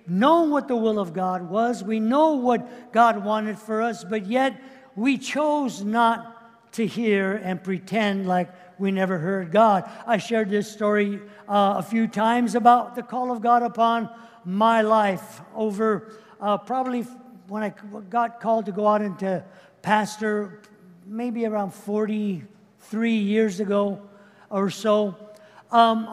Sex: male